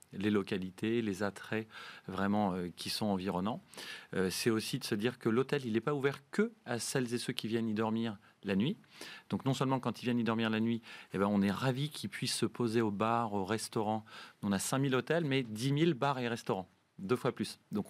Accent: French